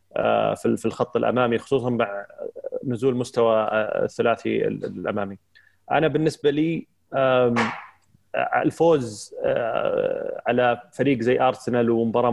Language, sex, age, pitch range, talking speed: Arabic, male, 30-49, 115-140 Hz, 95 wpm